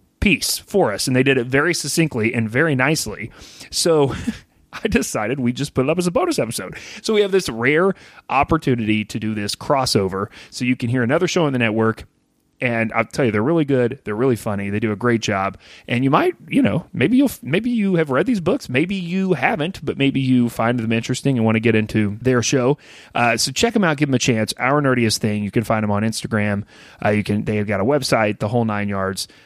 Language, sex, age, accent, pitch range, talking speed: English, male, 30-49, American, 105-140 Hz, 235 wpm